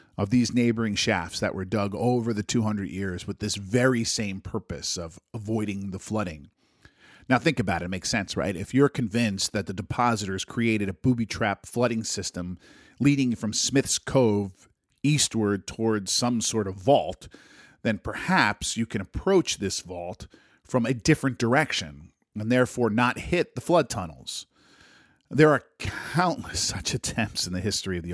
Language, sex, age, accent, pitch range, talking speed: English, male, 40-59, American, 100-130 Hz, 165 wpm